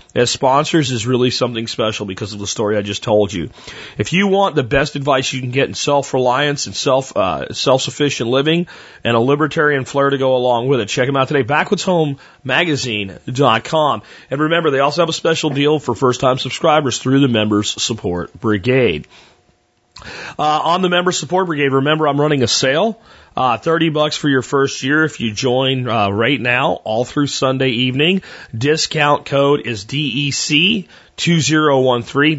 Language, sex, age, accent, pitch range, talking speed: English, male, 30-49, American, 120-145 Hz, 180 wpm